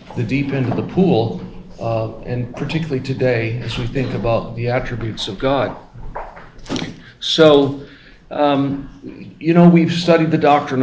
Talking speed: 145 wpm